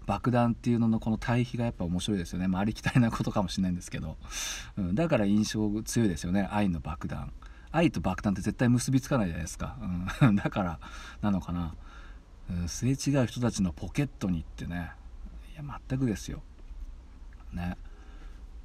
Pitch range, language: 85-110 Hz, Japanese